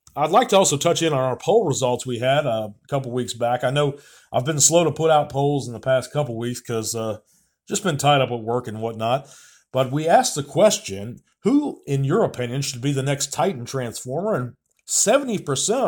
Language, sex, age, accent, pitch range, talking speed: English, male, 40-59, American, 120-150 Hz, 220 wpm